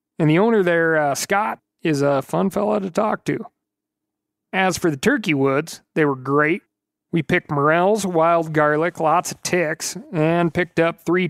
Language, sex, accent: English, male, American